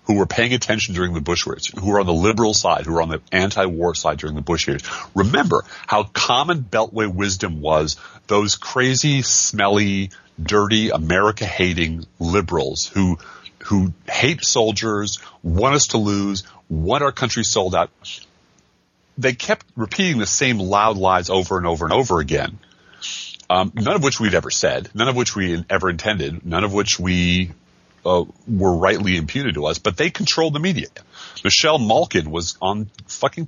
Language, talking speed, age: English, 170 wpm, 40-59